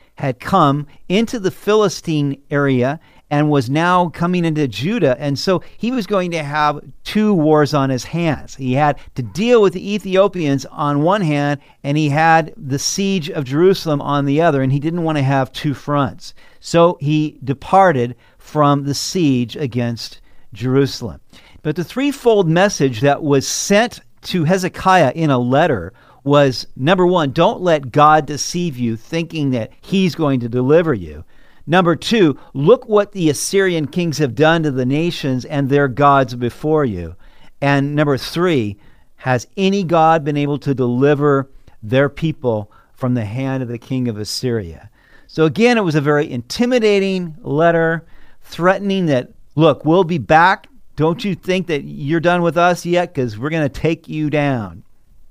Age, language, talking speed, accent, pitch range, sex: 50-69, English, 165 wpm, American, 135-175 Hz, male